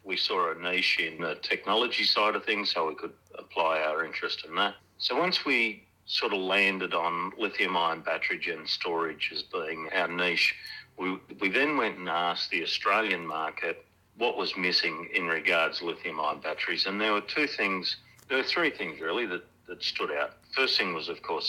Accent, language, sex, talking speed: Australian, English, male, 190 wpm